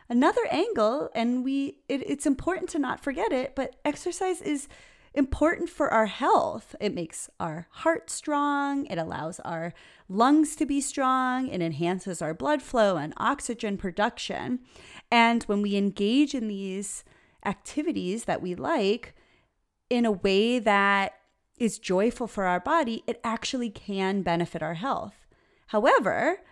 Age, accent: 30-49, American